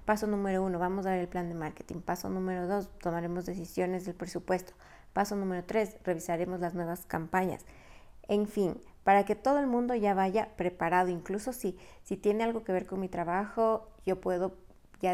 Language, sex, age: Spanish, female, 30-49